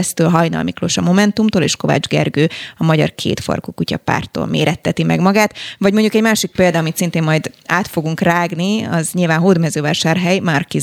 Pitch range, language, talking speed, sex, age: 160-205 Hz, Hungarian, 170 wpm, female, 20-39